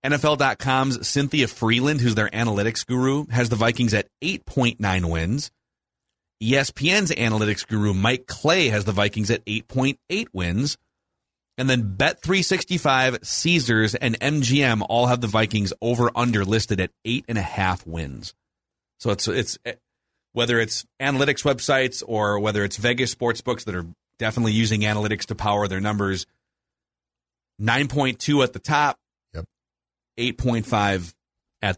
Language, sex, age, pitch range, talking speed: English, male, 30-49, 105-130 Hz, 125 wpm